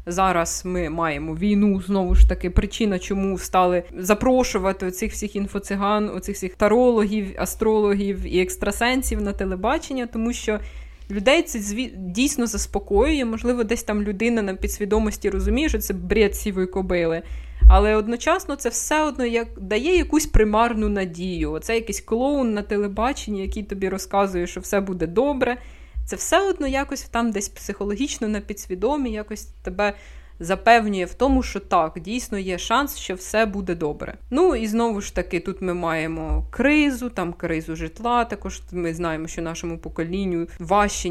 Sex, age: female, 20-39